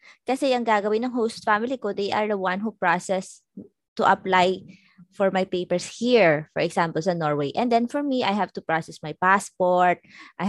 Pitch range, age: 175-240 Hz, 20-39